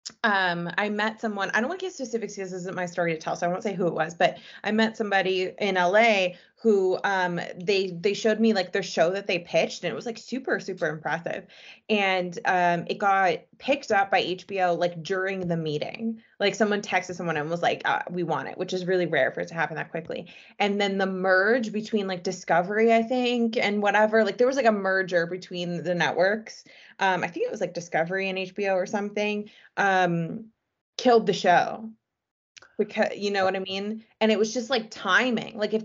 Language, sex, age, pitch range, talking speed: English, female, 20-39, 175-220 Hz, 220 wpm